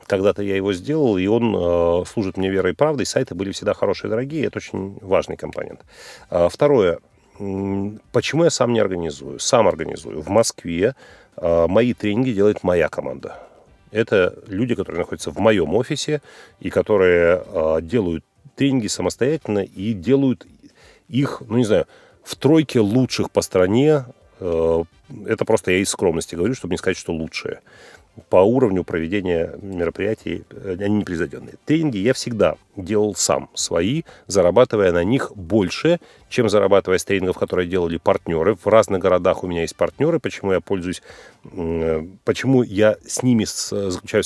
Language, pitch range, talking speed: Russian, 90-125 Hz, 150 wpm